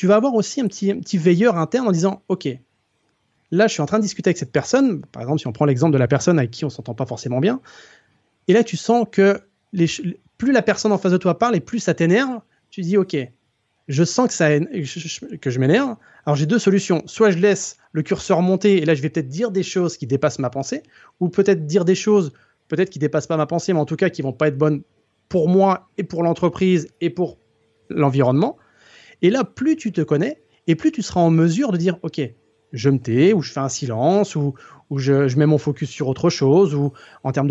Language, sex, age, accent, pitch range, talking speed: French, male, 30-49, French, 140-195 Hz, 260 wpm